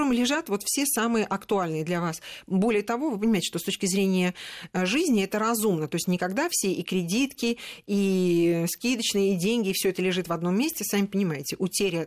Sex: female